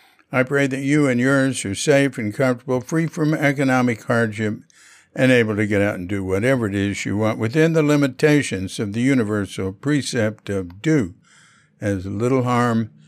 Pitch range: 110-140 Hz